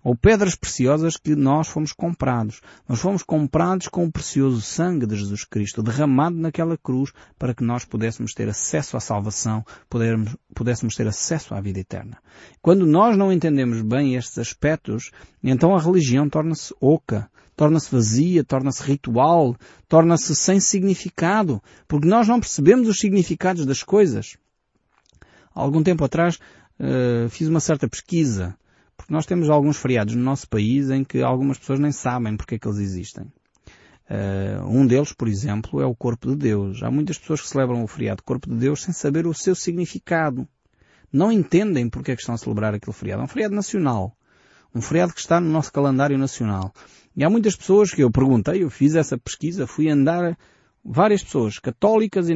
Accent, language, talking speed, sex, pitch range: Portuguese, Portuguese, 175 wpm, male, 120-170 Hz